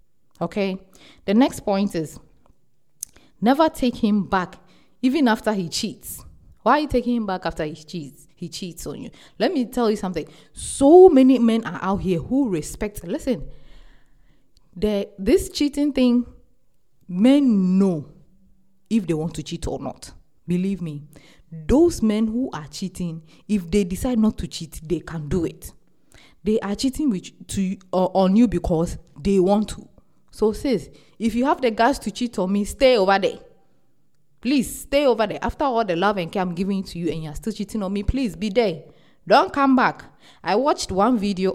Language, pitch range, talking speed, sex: English, 180-245 Hz, 180 wpm, female